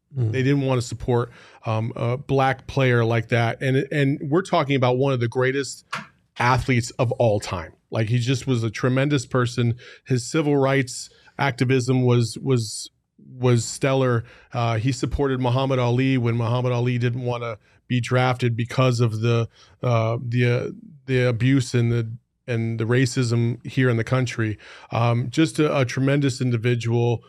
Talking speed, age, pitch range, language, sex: 165 wpm, 30-49, 115-130 Hz, English, male